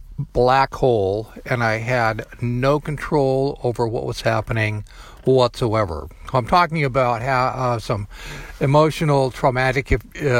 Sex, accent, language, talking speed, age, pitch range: male, American, English, 125 wpm, 60-79, 120-150 Hz